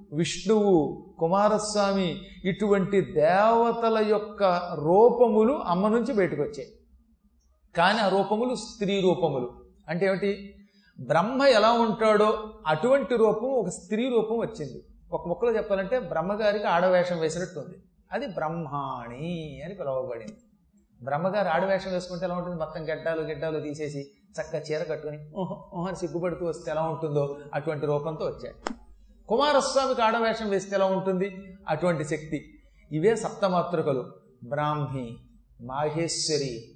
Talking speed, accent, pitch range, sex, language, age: 110 wpm, native, 155-205 Hz, male, Telugu, 30-49